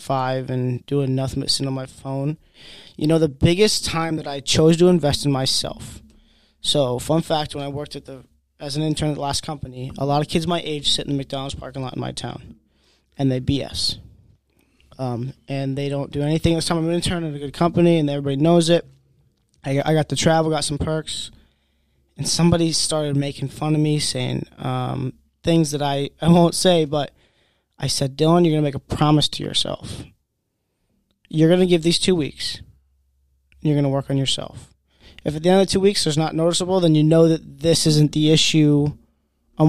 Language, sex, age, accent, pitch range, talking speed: English, male, 20-39, American, 115-160 Hz, 215 wpm